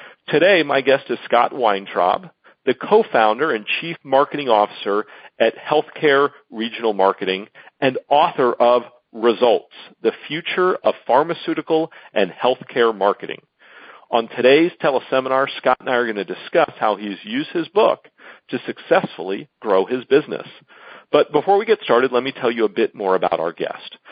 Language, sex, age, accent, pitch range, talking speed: English, male, 40-59, American, 110-135 Hz, 160 wpm